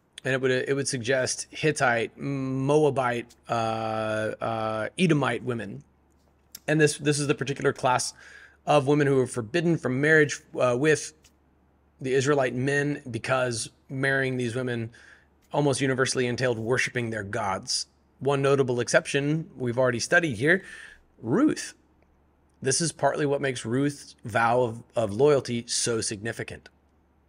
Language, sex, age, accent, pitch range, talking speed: English, male, 30-49, American, 110-140 Hz, 135 wpm